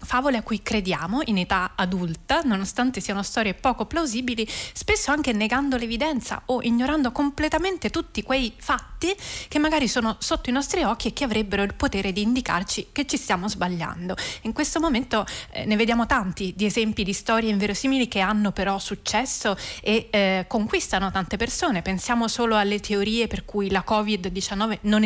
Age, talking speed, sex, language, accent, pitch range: 20-39, 170 wpm, female, Italian, native, 195-245 Hz